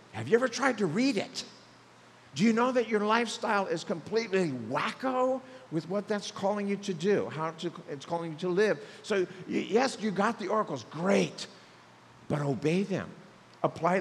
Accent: American